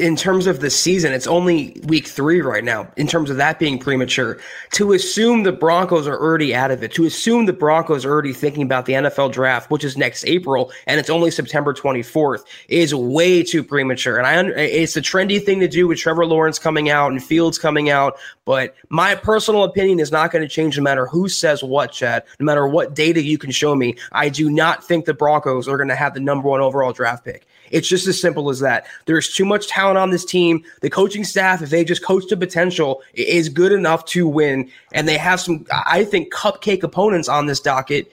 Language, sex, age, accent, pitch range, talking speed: English, male, 20-39, American, 145-175 Hz, 225 wpm